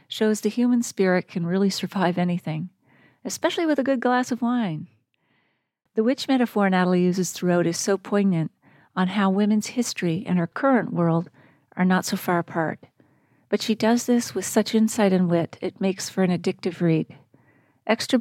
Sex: female